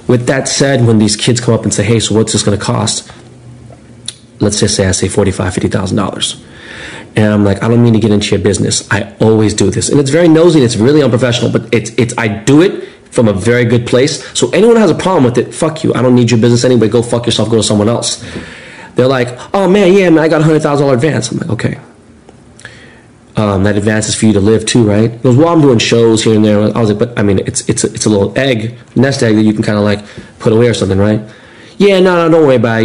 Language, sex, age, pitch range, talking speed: English, male, 30-49, 110-125 Hz, 270 wpm